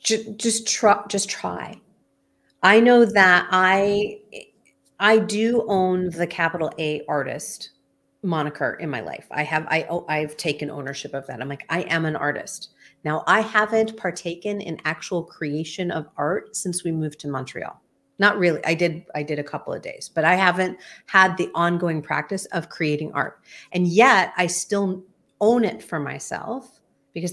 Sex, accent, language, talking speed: female, American, English, 165 wpm